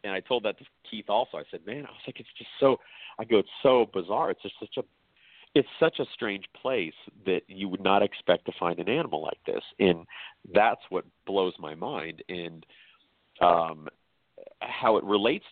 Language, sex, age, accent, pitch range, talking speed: English, male, 40-59, American, 80-105 Hz, 200 wpm